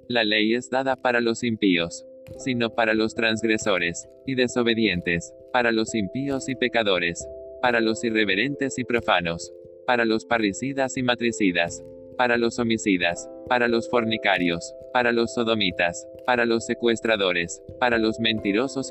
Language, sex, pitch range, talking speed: Spanish, male, 105-130 Hz, 135 wpm